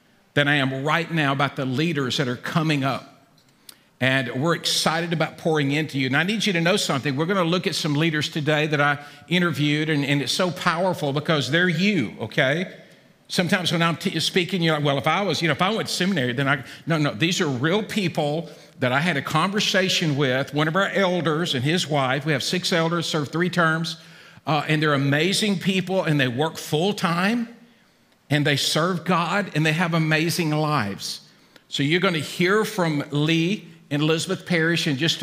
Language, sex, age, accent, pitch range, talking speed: English, male, 50-69, American, 145-185 Hz, 205 wpm